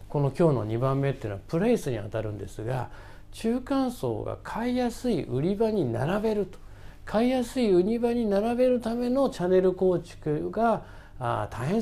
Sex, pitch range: male, 120-195 Hz